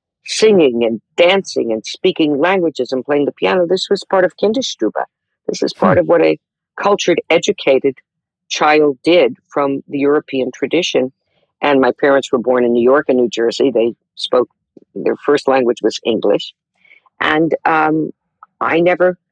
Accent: American